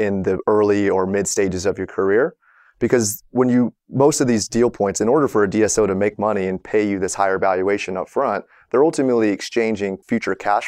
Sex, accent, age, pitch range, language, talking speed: male, American, 30-49, 100-120 Hz, English, 215 wpm